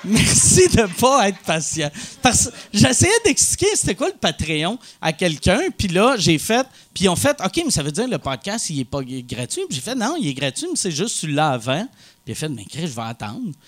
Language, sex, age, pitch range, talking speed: French, male, 40-59, 155-235 Hz, 270 wpm